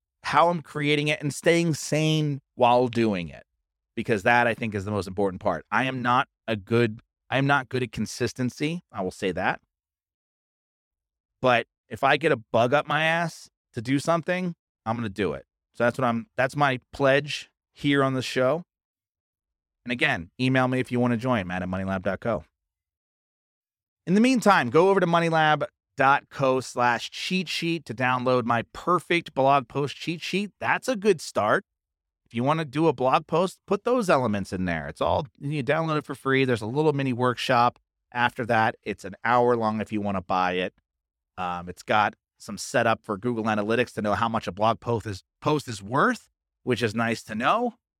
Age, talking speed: 30-49, 200 wpm